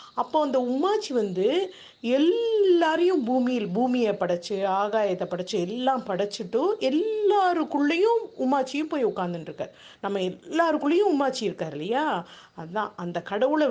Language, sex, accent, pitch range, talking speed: Tamil, female, native, 195-300 Hz, 100 wpm